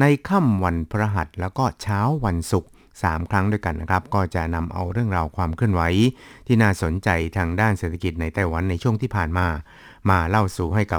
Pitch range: 85-105 Hz